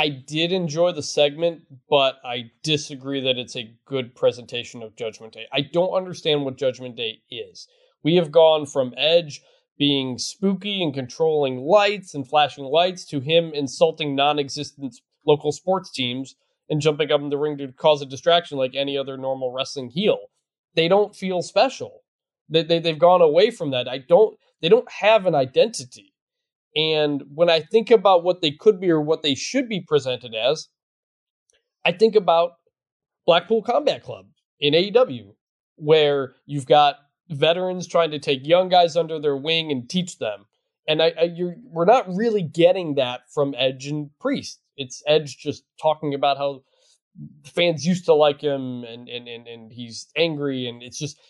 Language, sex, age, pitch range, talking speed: English, male, 20-39, 140-180 Hz, 175 wpm